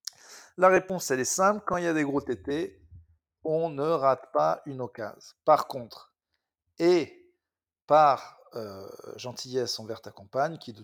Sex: male